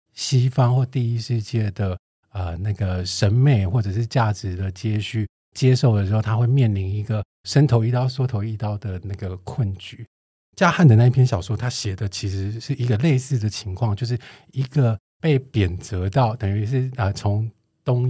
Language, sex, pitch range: Chinese, male, 100-125 Hz